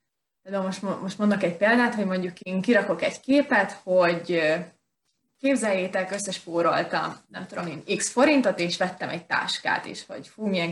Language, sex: Hungarian, female